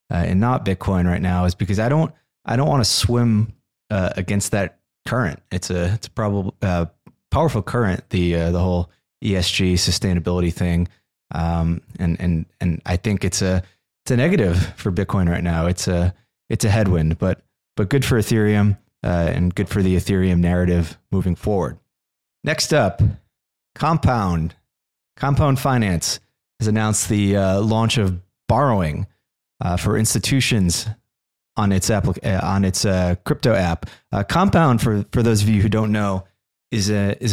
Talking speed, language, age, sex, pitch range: 170 wpm, English, 30-49, male, 90-115 Hz